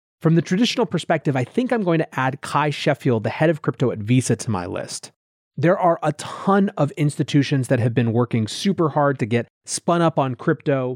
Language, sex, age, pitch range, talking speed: English, male, 30-49, 120-155 Hz, 215 wpm